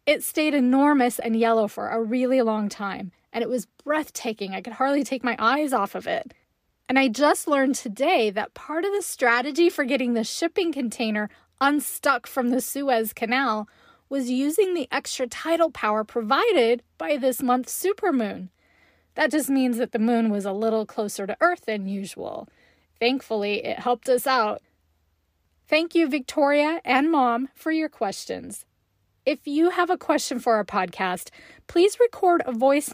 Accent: American